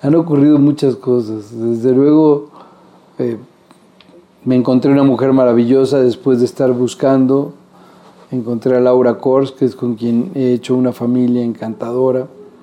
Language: Spanish